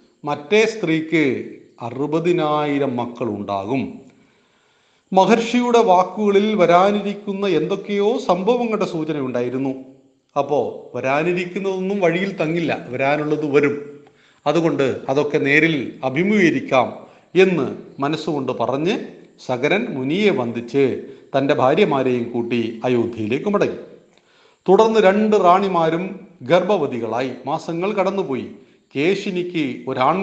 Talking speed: 55 wpm